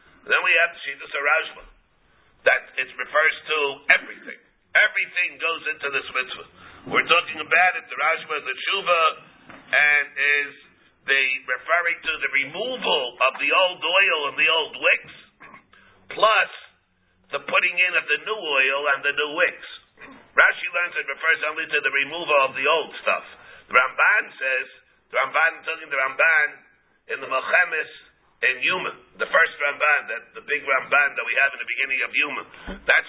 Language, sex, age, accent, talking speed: English, male, 50-69, American, 170 wpm